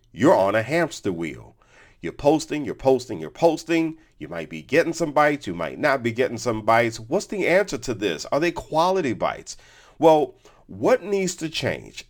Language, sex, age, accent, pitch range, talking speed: English, male, 50-69, American, 100-165 Hz, 190 wpm